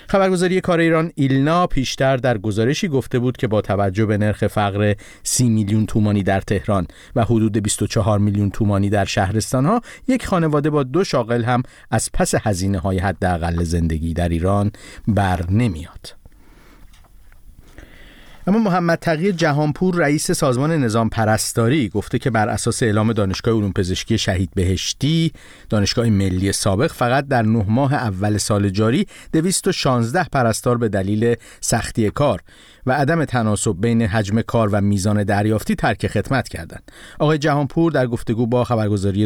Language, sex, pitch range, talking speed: Persian, male, 105-135 Hz, 150 wpm